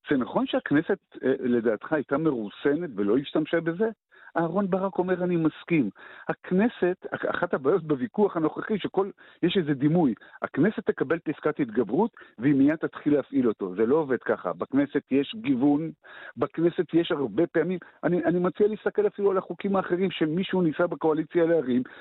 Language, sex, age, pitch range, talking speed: Hebrew, male, 50-69, 150-210 Hz, 150 wpm